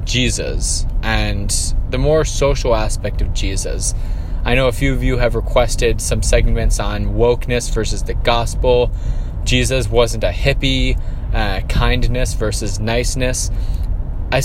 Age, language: 20-39, English